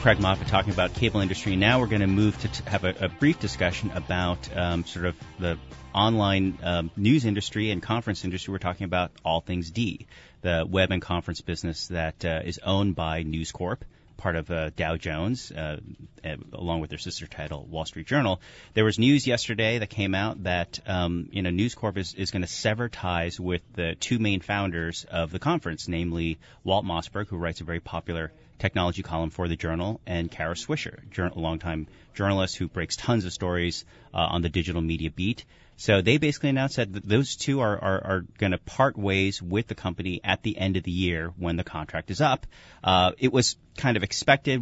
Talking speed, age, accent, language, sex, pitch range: 205 wpm, 30-49, American, English, male, 85-105 Hz